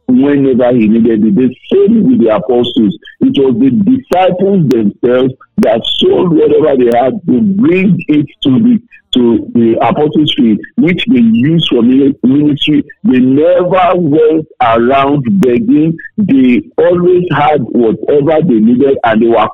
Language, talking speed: English, 135 wpm